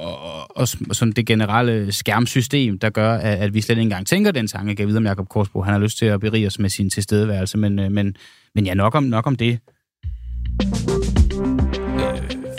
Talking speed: 190 wpm